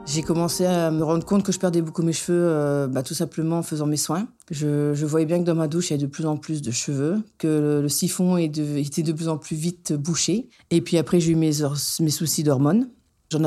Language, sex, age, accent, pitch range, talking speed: French, female, 50-69, French, 145-170 Hz, 275 wpm